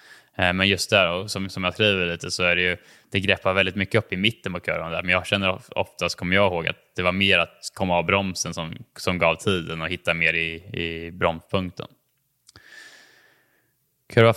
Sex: male